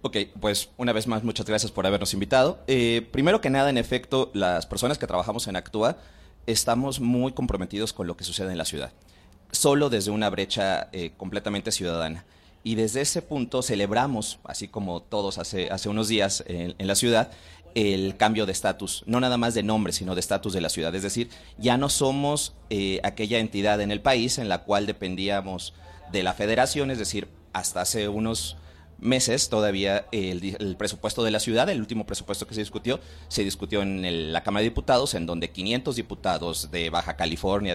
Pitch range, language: 95-115 Hz, Spanish